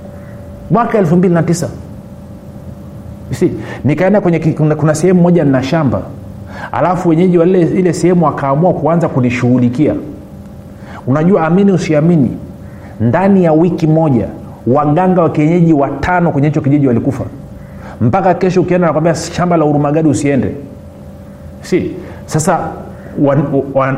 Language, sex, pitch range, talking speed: Swahili, male, 125-175 Hz, 120 wpm